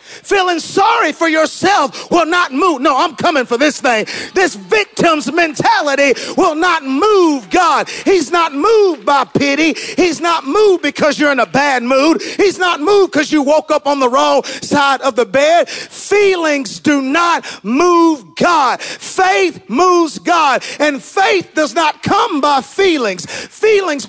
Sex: male